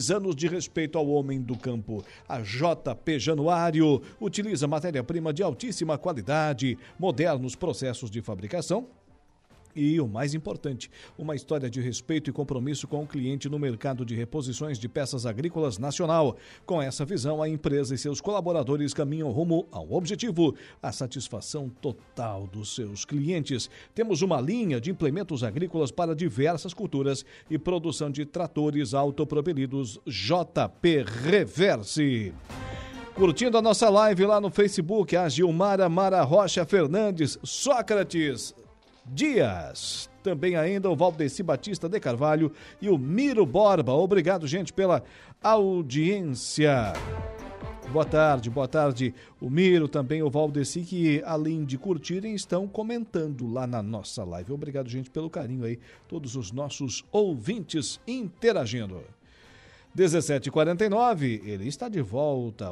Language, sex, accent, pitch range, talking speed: Portuguese, male, Brazilian, 135-180 Hz, 130 wpm